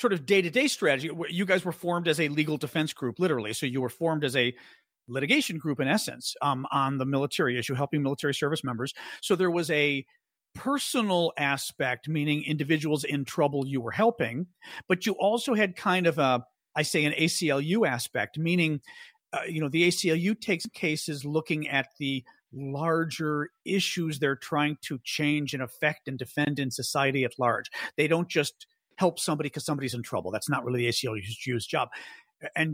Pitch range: 135-175 Hz